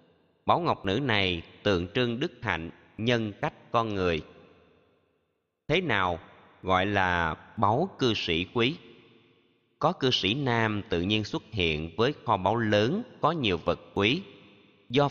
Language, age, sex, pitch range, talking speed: Vietnamese, 20-39, male, 95-120 Hz, 145 wpm